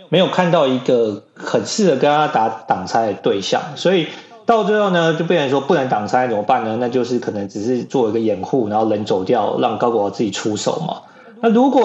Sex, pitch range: male, 125-185 Hz